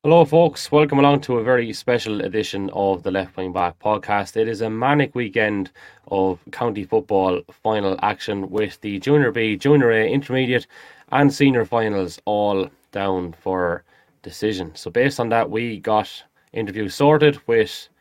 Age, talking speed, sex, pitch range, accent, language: 20-39, 160 wpm, male, 95-115 Hz, Irish, English